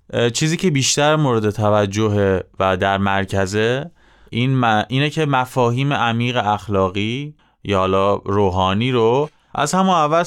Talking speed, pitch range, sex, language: 125 wpm, 100-120 Hz, male, Persian